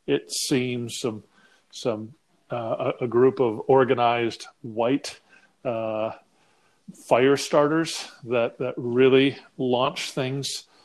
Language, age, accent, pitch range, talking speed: English, 40-59, American, 115-135 Hz, 100 wpm